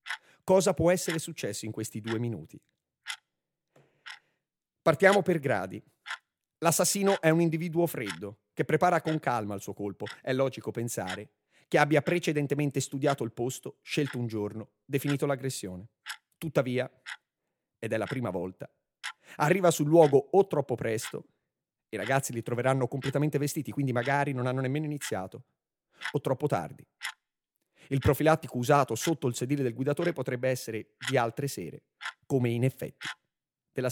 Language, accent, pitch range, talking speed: Italian, native, 120-155 Hz, 145 wpm